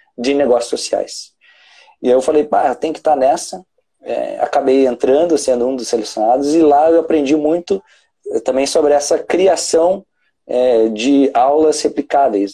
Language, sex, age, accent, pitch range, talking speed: Portuguese, male, 20-39, Brazilian, 125-155 Hz, 160 wpm